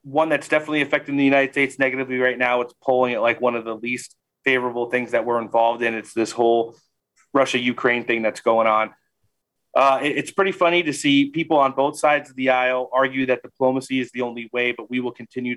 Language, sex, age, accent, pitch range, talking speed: English, male, 30-49, American, 120-135 Hz, 215 wpm